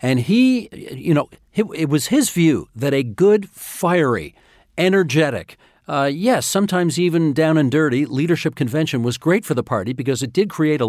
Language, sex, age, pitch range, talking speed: English, male, 50-69, 125-175 Hz, 175 wpm